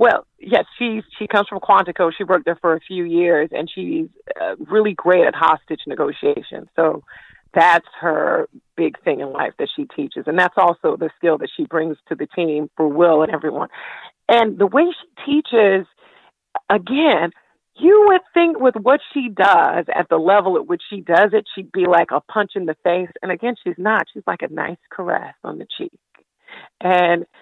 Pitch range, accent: 175-260 Hz, American